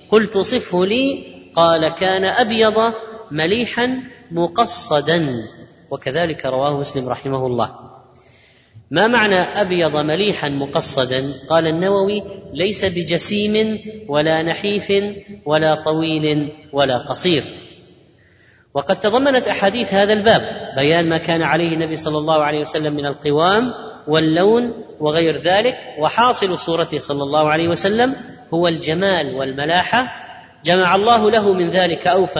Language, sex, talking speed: Arabic, female, 115 wpm